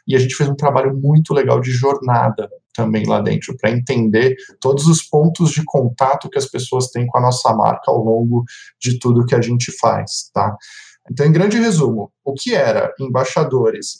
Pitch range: 125-160 Hz